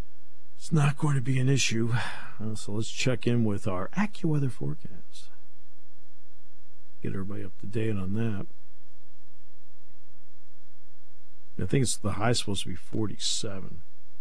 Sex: male